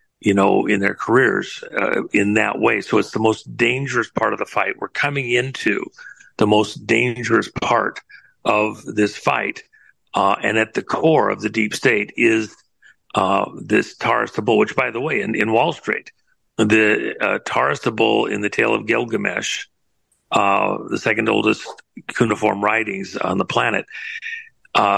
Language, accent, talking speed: English, American, 170 wpm